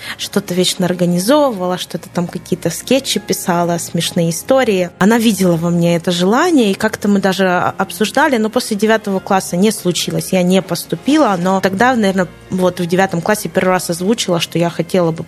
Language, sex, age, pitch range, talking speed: Ukrainian, female, 20-39, 175-220 Hz, 175 wpm